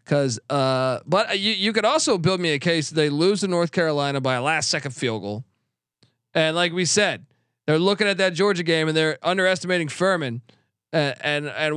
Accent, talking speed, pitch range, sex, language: American, 200 wpm, 140-170 Hz, male, English